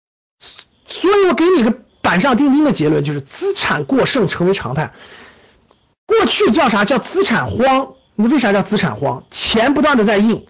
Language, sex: Chinese, male